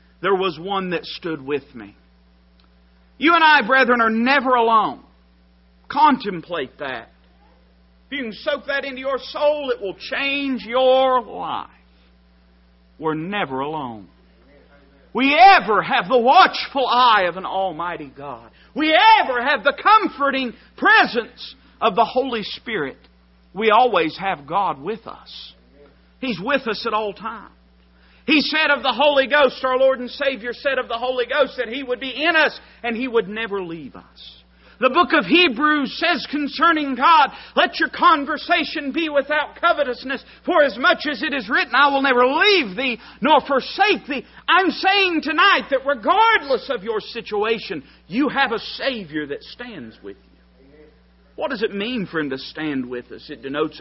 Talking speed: 165 wpm